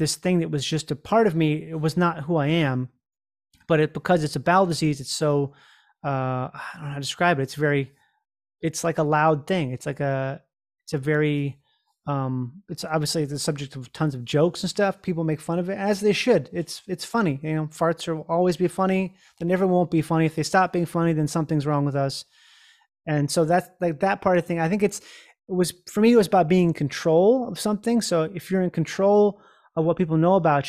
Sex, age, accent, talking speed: male, 30-49, American, 240 wpm